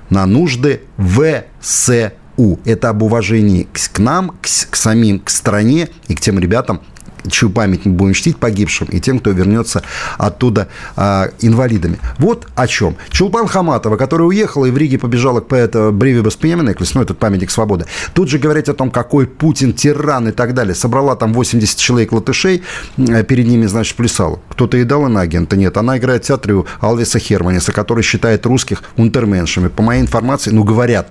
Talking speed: 170 wpm